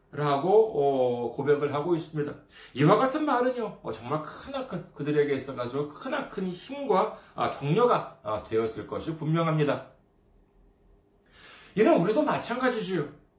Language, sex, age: Korean, male, 40-59